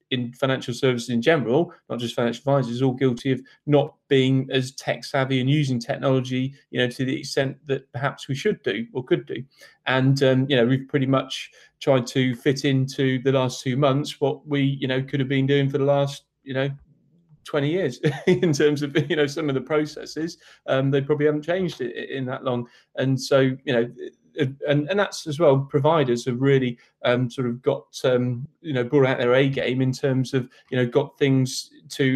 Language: English